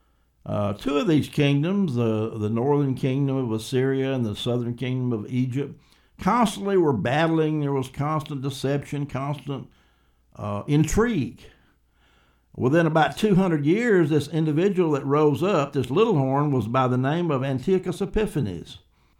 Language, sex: English, male